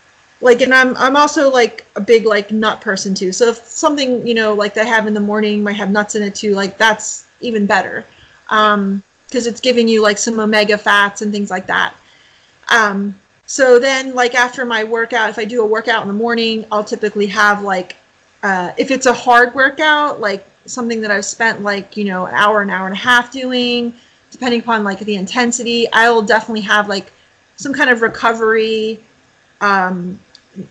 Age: 30-49